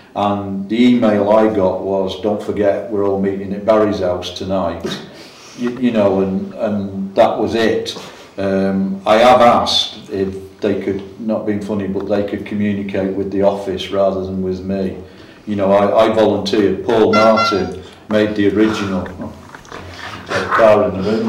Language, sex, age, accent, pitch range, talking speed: English, male, 50-69, British, 95-105 Hz, 165 wpm